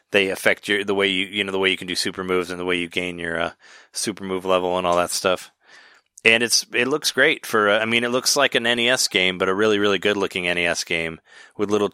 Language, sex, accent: English, male, American